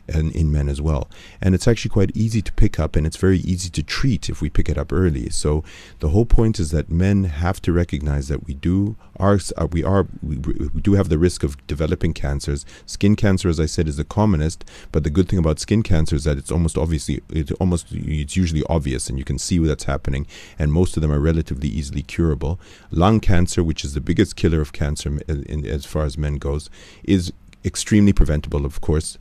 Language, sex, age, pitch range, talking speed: English, male, 30-49, 75-90 Hz, 225 wpm